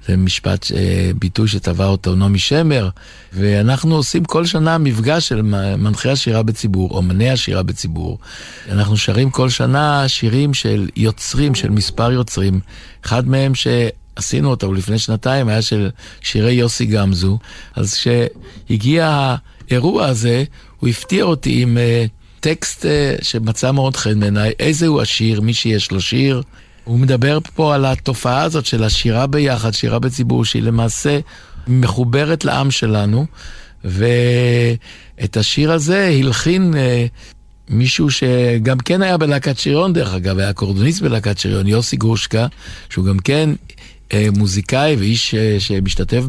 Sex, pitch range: male, 105-135 Hz